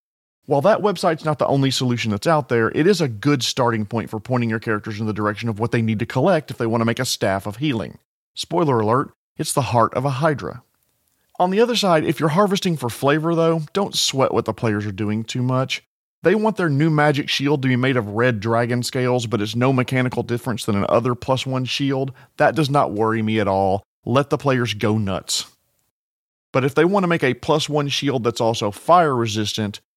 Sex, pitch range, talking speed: male, 115-145 Hz, 230 wpm